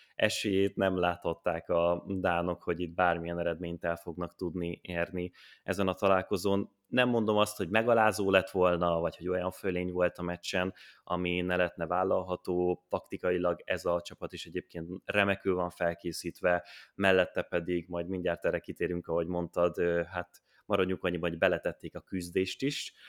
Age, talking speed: 20-39, 155 wpm